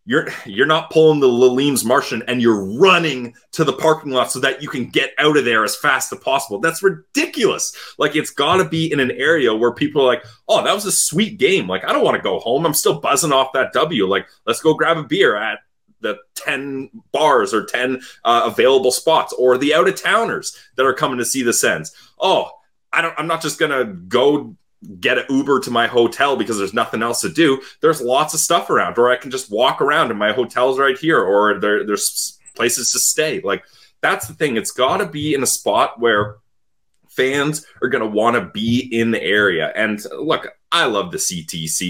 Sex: male